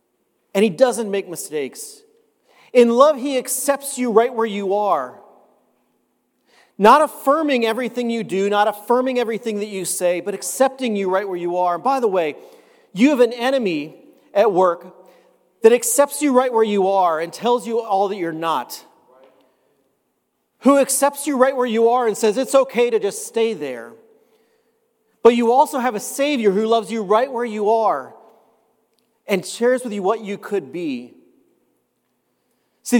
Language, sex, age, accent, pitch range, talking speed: English, male, 40-59, American, 200-255 Hz, 170 wpm